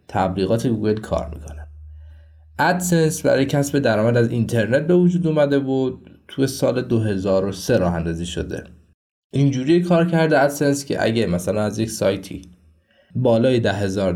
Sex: male